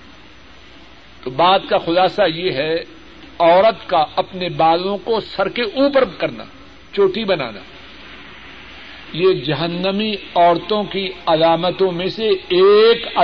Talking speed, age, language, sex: 110 wpm, 60-79, Urdu, male